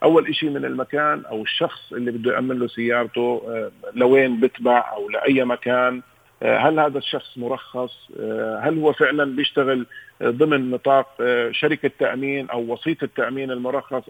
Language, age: Arabic, 40-59